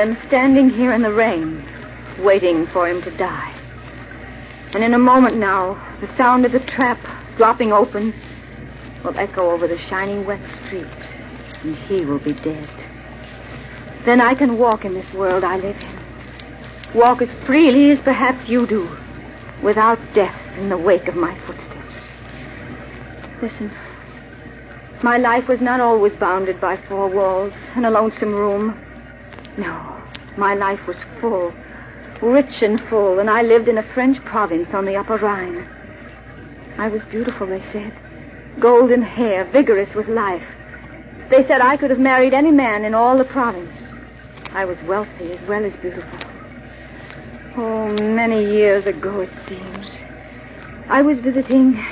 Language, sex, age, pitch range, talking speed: English, female, 60-79, 180-245 Hz, 155 wpm